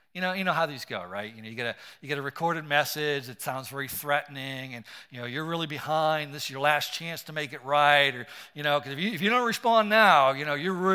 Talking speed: 280 wpm